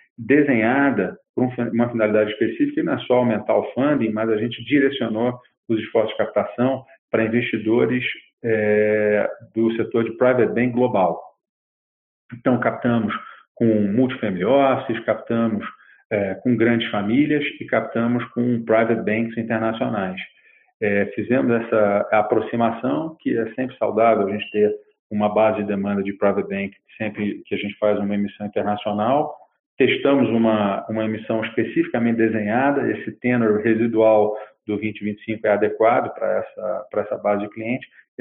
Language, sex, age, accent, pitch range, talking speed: Portuguese, male, 40-59, Brazilian, 105-120 Hz, 145 wpm